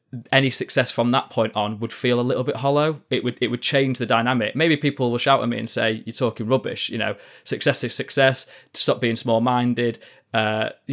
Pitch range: 110-130 Hz